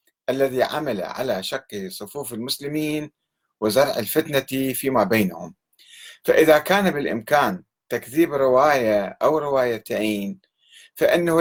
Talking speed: 95 wpm